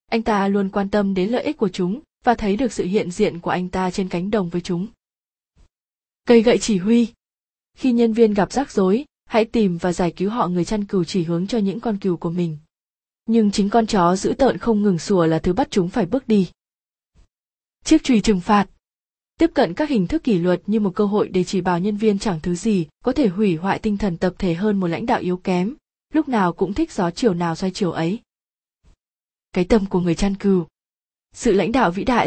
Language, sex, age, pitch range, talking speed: Vietnamese, female, 20-39, 185-230 Hz, 230 wpm